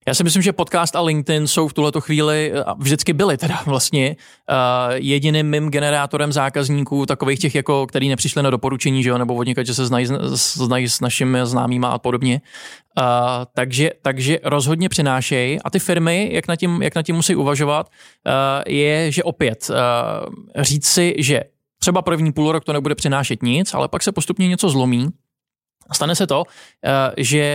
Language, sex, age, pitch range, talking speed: Czech, male, 20-39, 135-165 Hz, 170 wpm